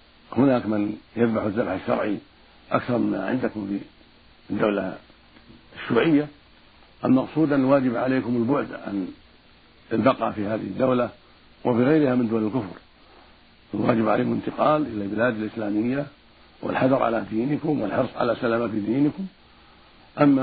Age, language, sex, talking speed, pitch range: 60-79, Arabic, male, 110 wpm, 105-135 Hz